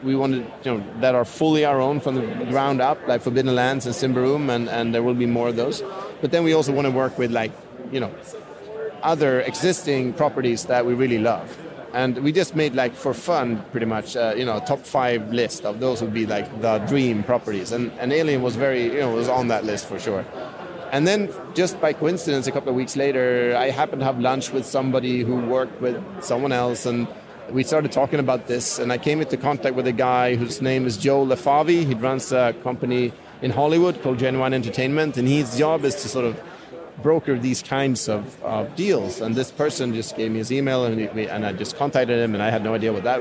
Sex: male